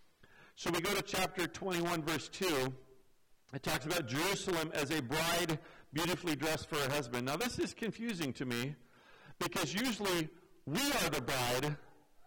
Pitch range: 150-190 Hz